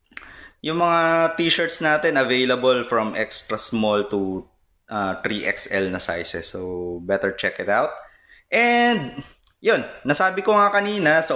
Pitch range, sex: 110-135 Hz, male